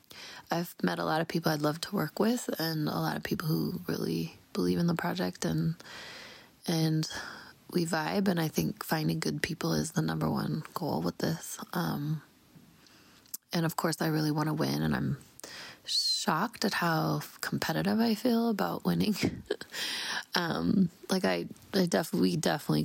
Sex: female